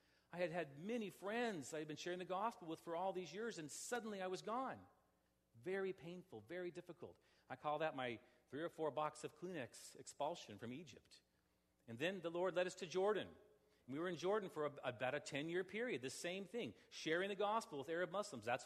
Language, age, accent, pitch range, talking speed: English, 40-59, American, 130-180 Hz, 210 wpm